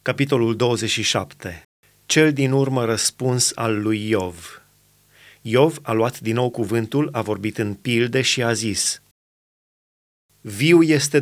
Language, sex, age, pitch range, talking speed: Romanian, male, 30-49, 130-155 Hz, 130 wpm